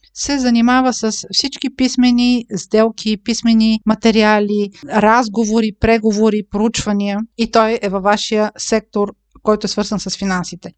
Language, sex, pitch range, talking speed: Bulgarian, female, 205-245 Hz, 120 wpm